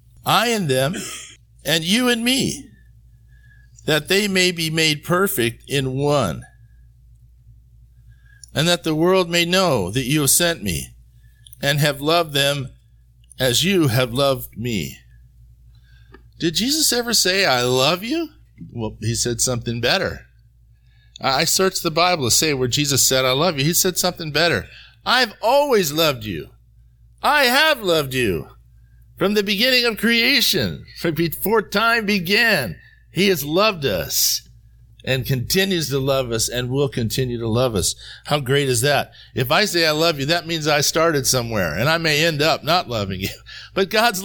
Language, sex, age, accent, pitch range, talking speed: English, male, 50-69, American, 120-185 Hz, 160 wpm